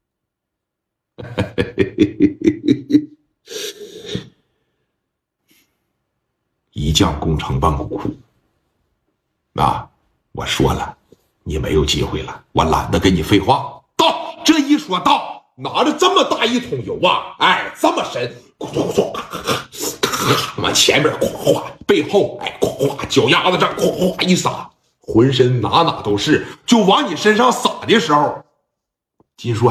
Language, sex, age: Chinese, male, 50-69